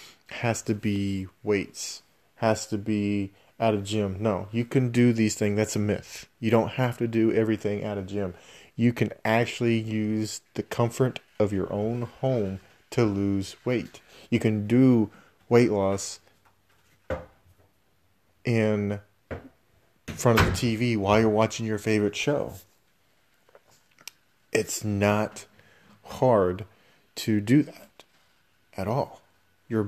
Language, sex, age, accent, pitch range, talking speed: English, male, 30-49, American, 100-115 Hz, 135 wpm